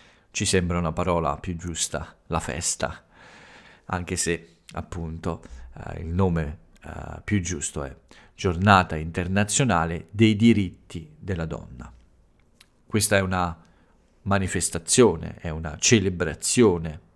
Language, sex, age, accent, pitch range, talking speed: Italian, male, 40-59, native, 85-100 Hz, 110 wpm